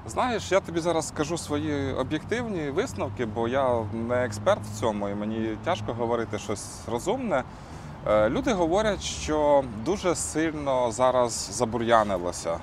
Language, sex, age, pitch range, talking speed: Ukrainian, male, 20-39, 100-120 Hz, 130 wpm